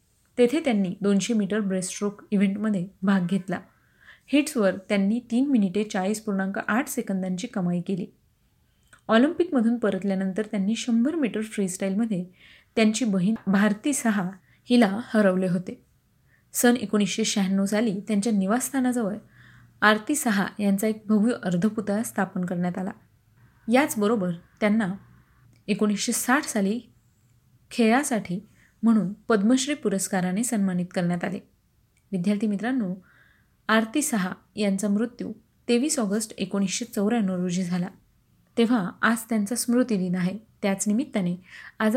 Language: Marathi